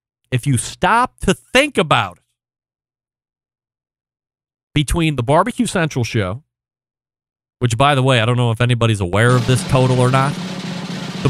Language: English